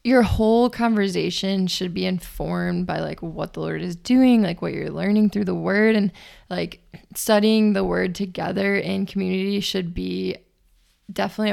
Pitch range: 185-205 Hz